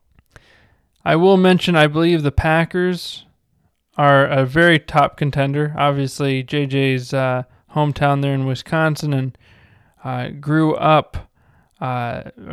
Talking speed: 115 wpm